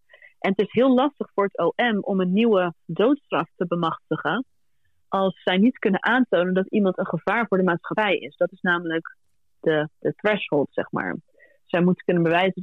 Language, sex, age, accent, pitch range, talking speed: Greek, female, 30-49, Dutch, 175-220 Hz, 185 wpm